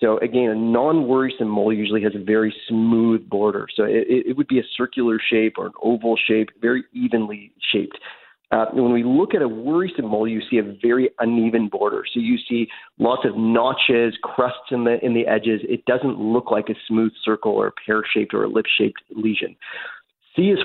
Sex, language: male, English